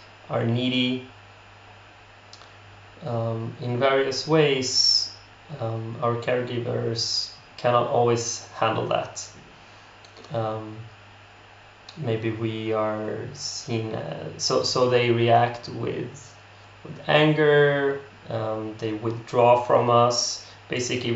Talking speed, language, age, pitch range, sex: 90 wpm, English, 20-39, 105-120 Hz, male